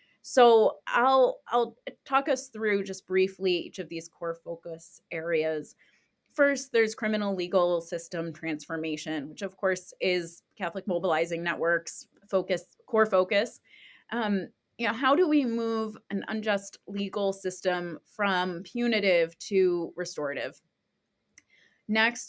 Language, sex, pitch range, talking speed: English, female, 170-205 Hz, 125 wpm